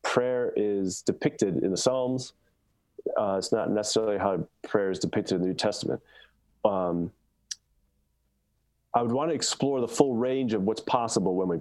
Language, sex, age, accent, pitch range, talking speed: English, male, 30-49, American, 90-115 Hz, 165 wpm